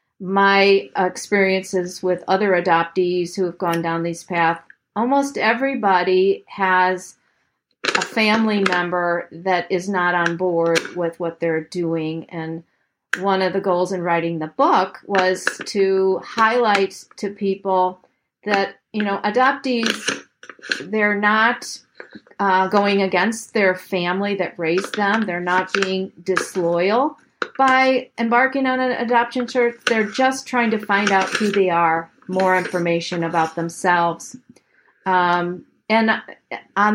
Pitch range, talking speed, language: 175-210 Hz, 130 wpm, English